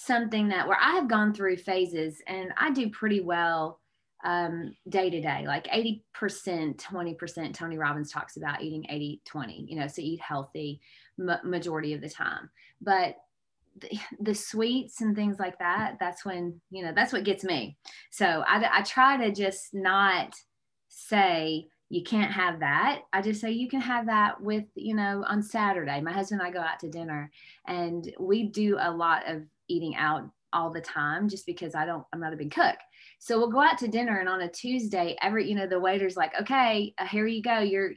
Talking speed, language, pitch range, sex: 200 wpm, English, 165-220 Hz, female